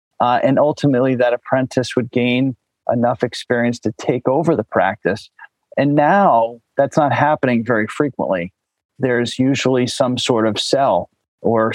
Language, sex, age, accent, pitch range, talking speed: English, male, 40-59, American, 115-140 Hz, 145 wpm